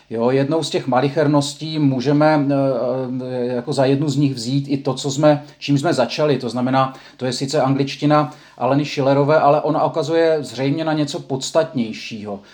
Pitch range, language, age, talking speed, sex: 135-160 Hz, Czech, 40-59, 165 wpm, male